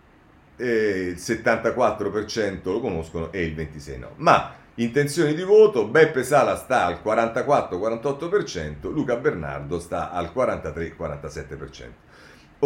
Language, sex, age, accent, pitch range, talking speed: Italian, male, 40-59, native, 75-100 Hz, 110 wpm